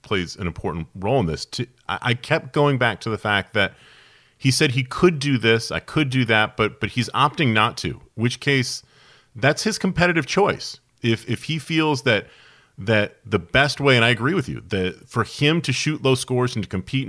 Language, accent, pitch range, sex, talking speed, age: English, American, 105-135 Hz, male, 210 wpm, 40-59